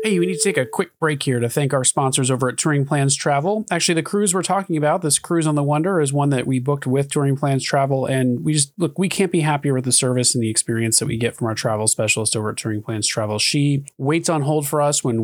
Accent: American